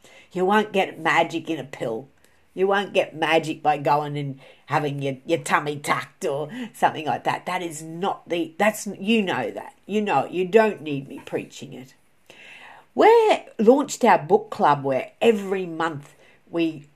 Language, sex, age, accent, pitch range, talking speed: English, female, 50-69, Australian, 145-185 Hz, 175 wpm